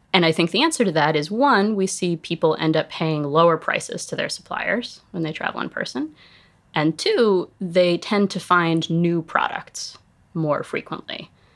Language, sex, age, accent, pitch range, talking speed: English, female, 20-39, American, 155-190 Hz, 180 wpm